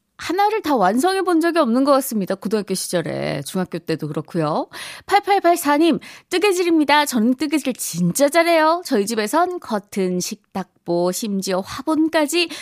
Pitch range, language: 185-310 Hz, Korean